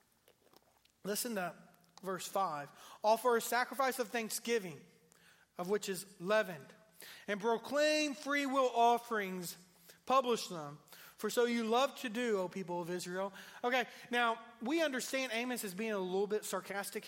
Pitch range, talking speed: 185-245 Hz, 145 wpm